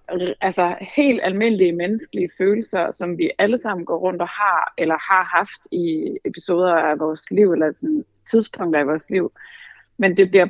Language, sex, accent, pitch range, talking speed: Danish, female, native, 170-205 Hz, 170 wpm